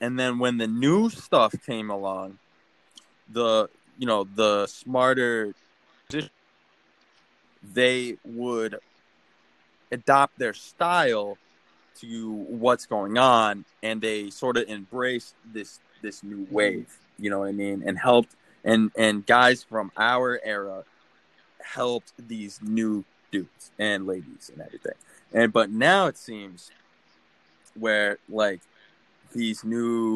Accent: American